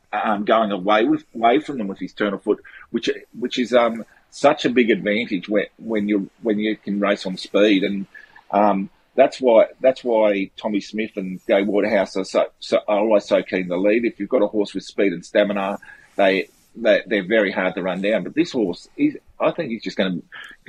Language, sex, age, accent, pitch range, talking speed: English, male, 40-59, Australian, 105-130 Hz, 220 wpm